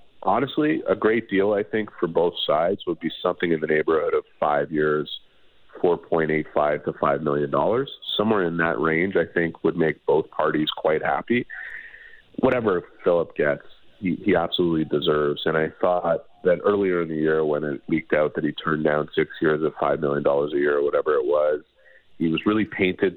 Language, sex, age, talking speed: English, male, 30-49, 190 wpm